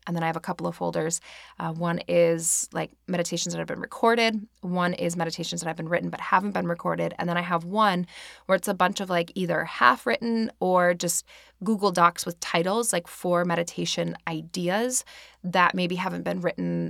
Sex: female